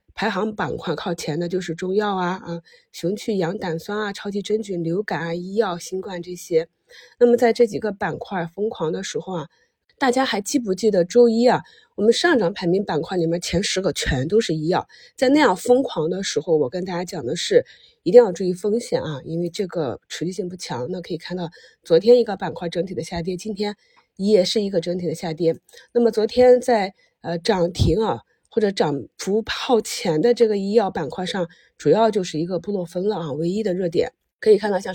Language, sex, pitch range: Chinese, female, 175-220 Hz